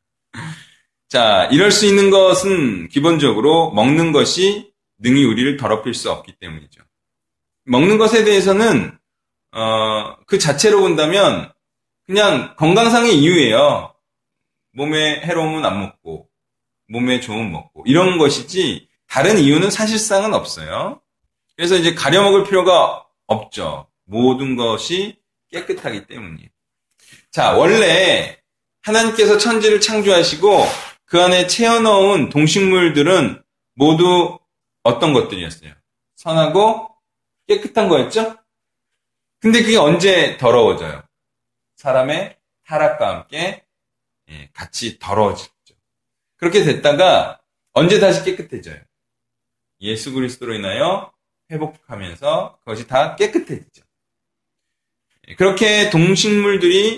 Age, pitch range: 30-49, 130-205 Hz